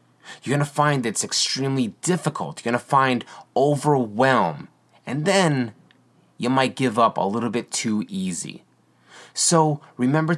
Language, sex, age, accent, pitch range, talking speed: English, male, 30-49, American, 105-145 Hz, 145 wpm